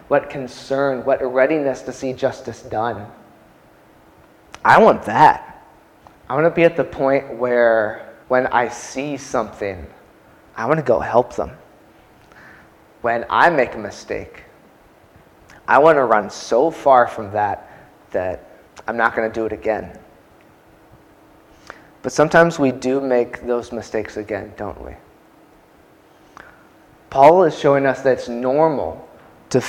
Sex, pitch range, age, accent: male, 120-140 Hz, 20-39, American